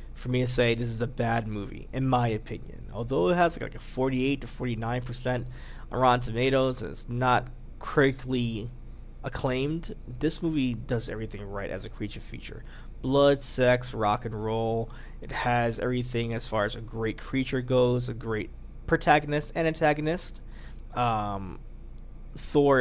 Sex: male